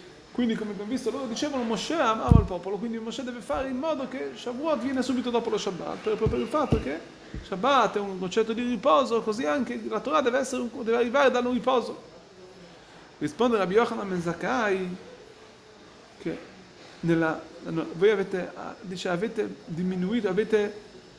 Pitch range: 185-245 Hz